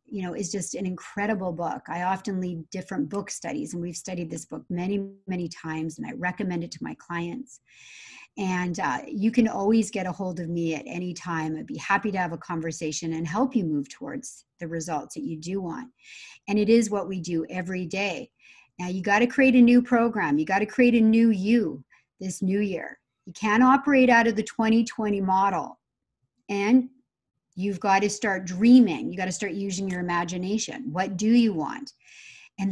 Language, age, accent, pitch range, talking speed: English, 40-59, American, 180-235 Hz, 205 wpm